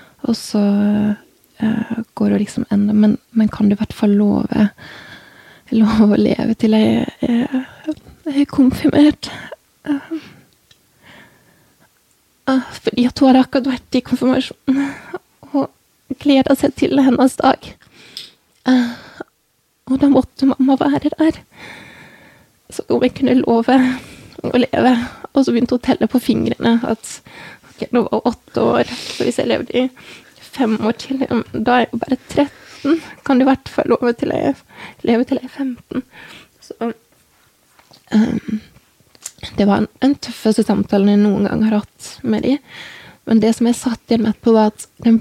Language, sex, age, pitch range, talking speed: English, female, 20-39, 220-265 Hz, 145 wpm